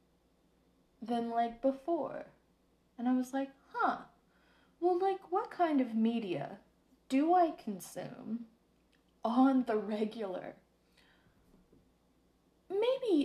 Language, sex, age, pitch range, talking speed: English, female, 20-39, 205-270 Hz, 95 wpm